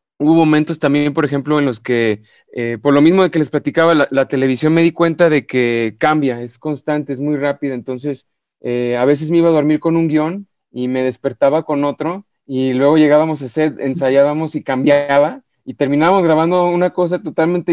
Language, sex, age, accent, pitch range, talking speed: Spanish, male, 30-49, Mexican, 140-165 Hz, 205 wpm